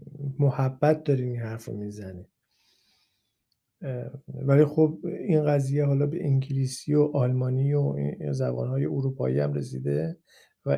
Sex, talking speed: male, 115 wpm